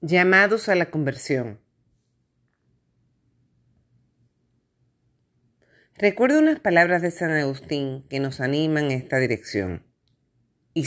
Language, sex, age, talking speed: Spanish, female, 40-59, 95 wpm